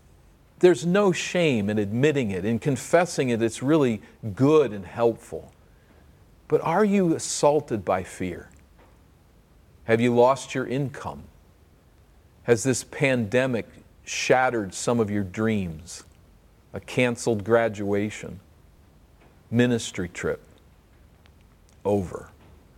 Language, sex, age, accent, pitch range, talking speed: English, male, 50-69, American, 90-125 Hz, 105 wpm